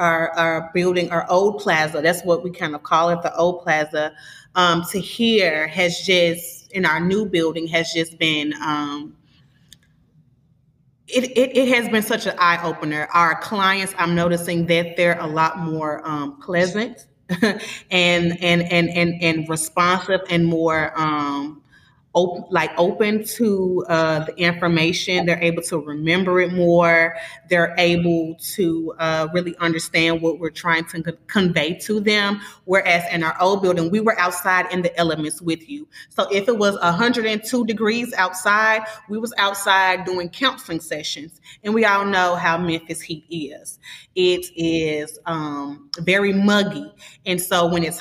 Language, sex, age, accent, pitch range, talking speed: English, female, 30-49, American, 165-190 Hz, 155 wpm